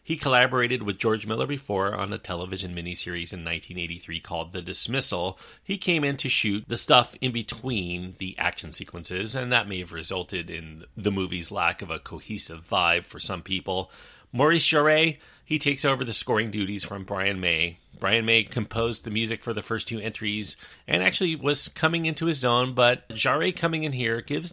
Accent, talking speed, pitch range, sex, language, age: American, 190 wpm, 95-140 Hz, male, English, 40-59